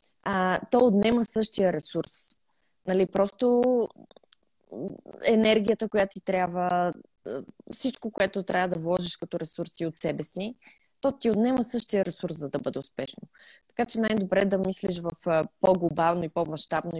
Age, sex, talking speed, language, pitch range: 20-39, female, 140 wpm, Bulgarian, 170-220 Hz